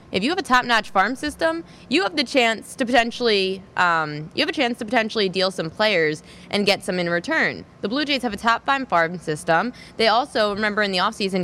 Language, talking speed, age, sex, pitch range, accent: English, 220 wpm, 20-39, female, 180-240 Hz, American